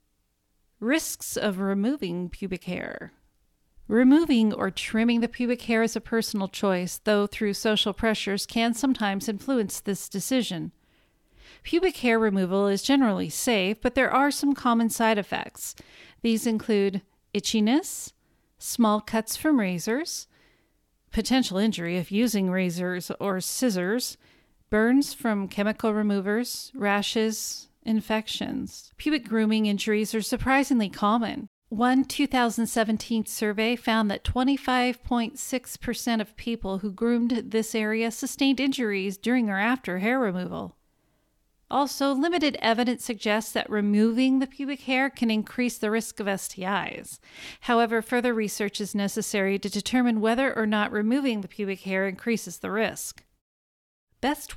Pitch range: 200-245 Hz